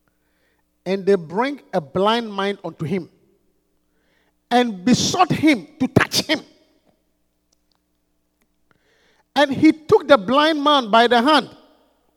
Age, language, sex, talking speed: 50-69, English, male, 115 wpm